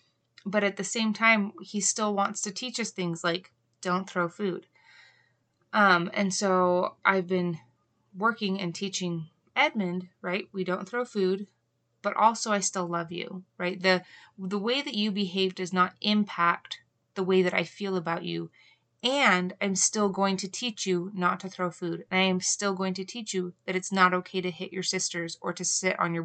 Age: 20-39